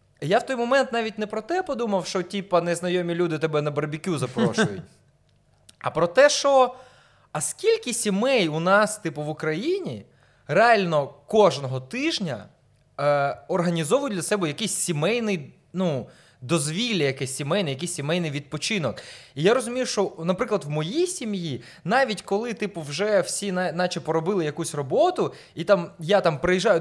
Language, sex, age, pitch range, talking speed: Ukrainian, male, 20-39, 150-210 Hz, 150 wpm